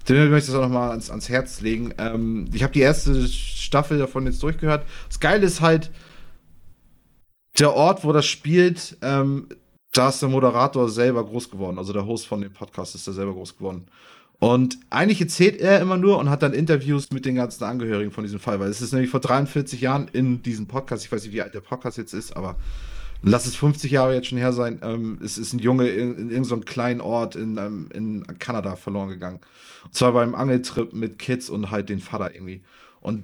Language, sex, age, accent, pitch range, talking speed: German, male, 30-49, German, 105-135 Hz, 220 wpm